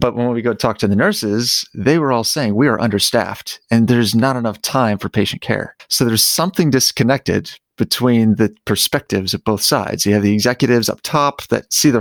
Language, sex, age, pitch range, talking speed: English, male, 30-49, 105-125 Hz, 210 wpm